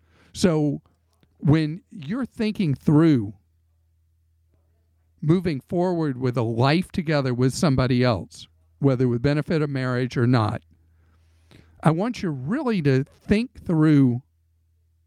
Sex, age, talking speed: male, 50-69, 115 wpm